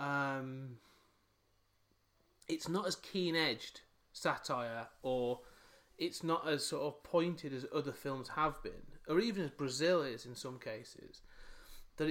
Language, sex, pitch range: English, male, 125-175 Hz